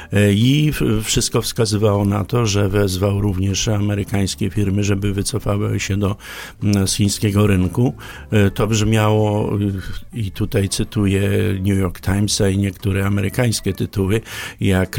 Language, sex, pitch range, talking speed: Polish, male, 100-120 Hz, 120 wpm